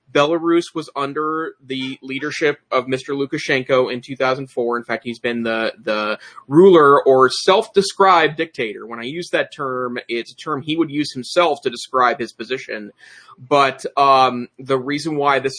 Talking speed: 160 wpm